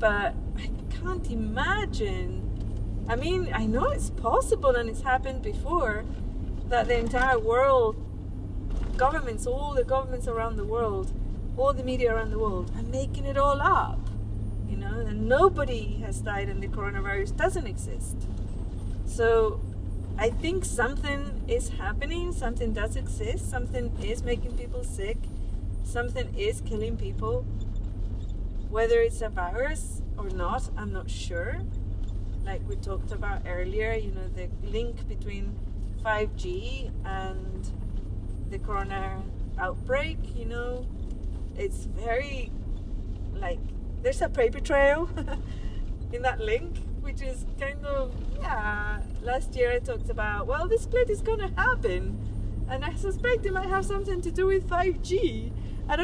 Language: English